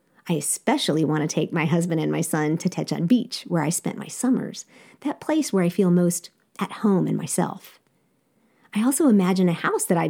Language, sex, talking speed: English, female, 210 wpm